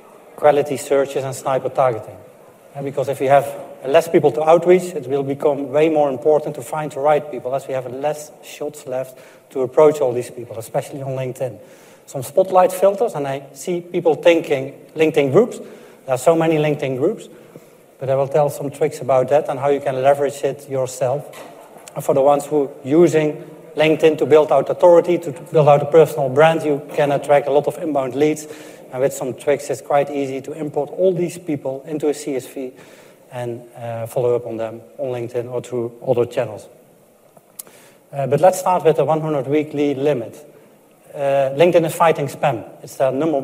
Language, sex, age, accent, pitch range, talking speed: English, male, 30-49, Dutch, 135-155 Hz, 190 wpm